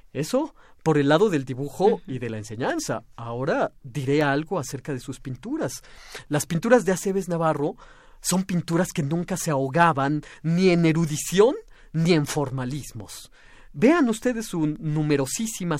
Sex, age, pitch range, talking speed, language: male, 40-59, 140-185 Hz, 145 wpm, Spanish